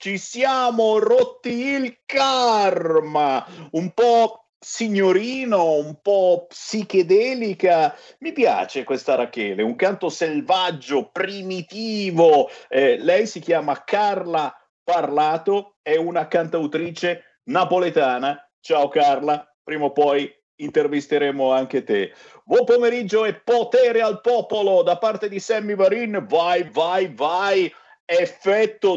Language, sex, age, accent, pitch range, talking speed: Italian, male, 50-69, native, 170-240 Hz, 110 wpm